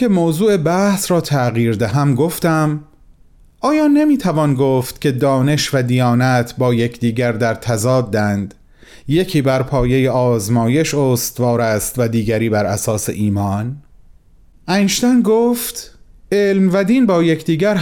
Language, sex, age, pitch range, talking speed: Persian, male, 30-49, 120-180 Hz, 125 wpm